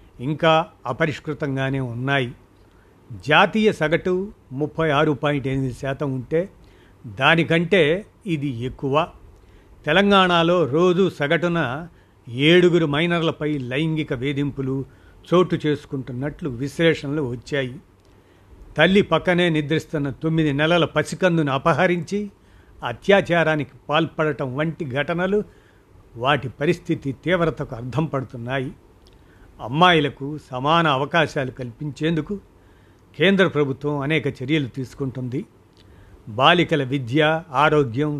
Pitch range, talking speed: 130-165 Hz, 85 wpm